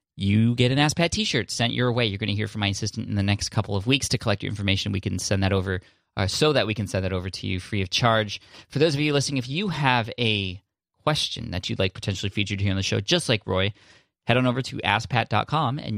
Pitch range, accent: 100-125 Hz, American